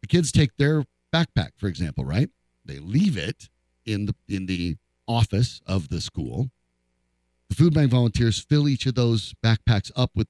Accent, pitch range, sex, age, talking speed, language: American, 95-125 Hz, male, 40-59, 175 wpm, English